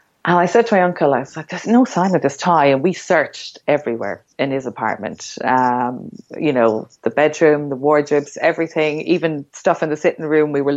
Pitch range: 140-180 Hz